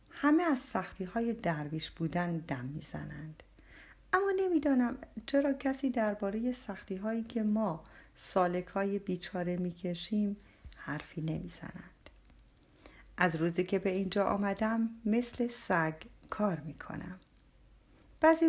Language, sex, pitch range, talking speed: Persian, female, 165-240 Hz, 105 wpm